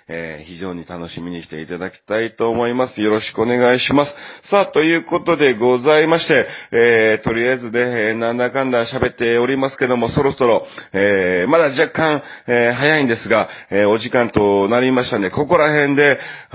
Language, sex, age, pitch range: Japanese, male, 40-59, 95-130 Hz